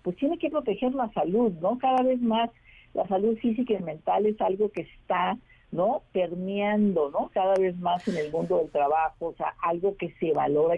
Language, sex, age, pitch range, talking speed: Spanish, female, 50-69, 150-205 Hz, 200 wpm